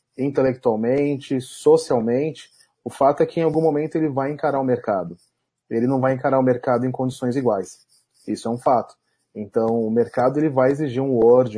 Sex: male